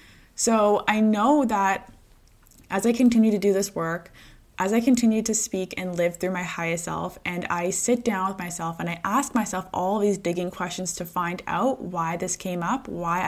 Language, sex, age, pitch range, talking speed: English, female, 20-39, 185-230 Hz, 200 wpm